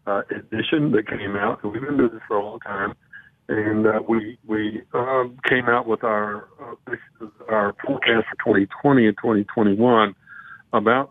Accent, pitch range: American, 105-120 Hz